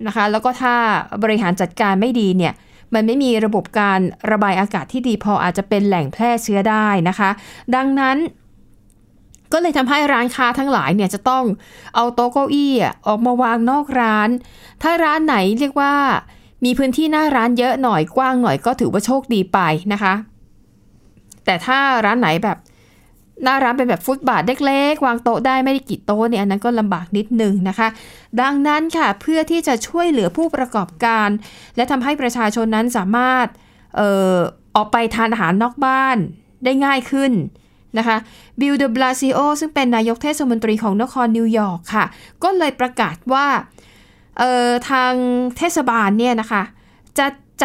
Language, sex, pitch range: Thai, female, 210-265 Hz